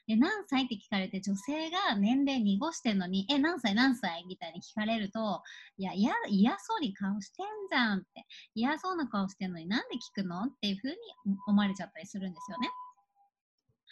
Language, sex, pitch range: Japanese, male, 200-290 Hz